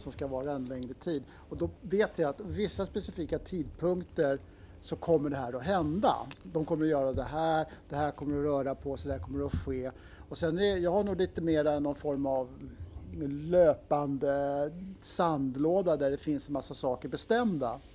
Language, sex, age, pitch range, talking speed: Swedish, male, 50-69, 135-175 Hz, 195 wpm